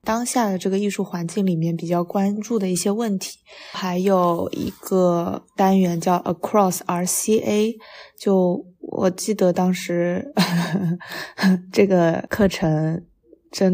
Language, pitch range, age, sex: Chinese, 180-215 Hz, 20-39, female